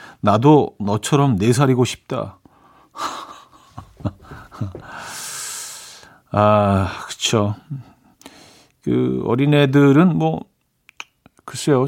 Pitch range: 110-150 Hz